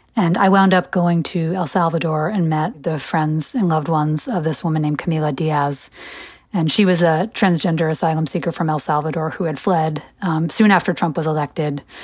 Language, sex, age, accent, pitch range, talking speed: English, female, 30-49, American, 150-180 Hz, 200 wpm